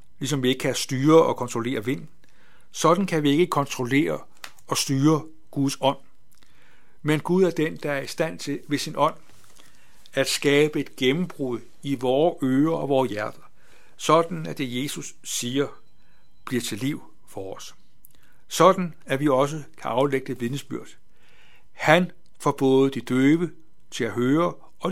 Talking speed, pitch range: 160 wpm, 130-160 Hz